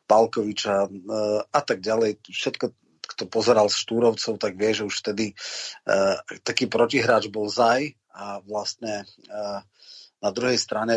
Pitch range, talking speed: 105-120 Hz, 140 wpm